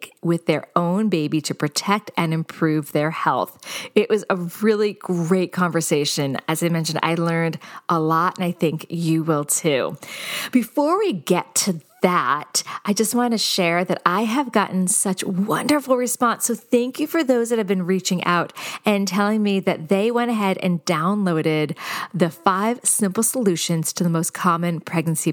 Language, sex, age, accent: English, female, 40-59, American